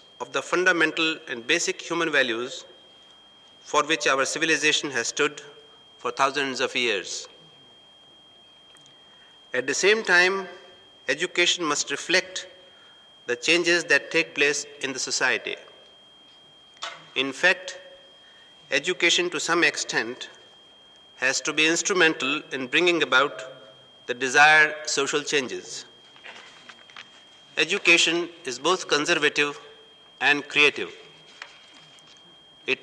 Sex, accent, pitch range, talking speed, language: male, Indian, 150-200 Hz, 100 wpm, English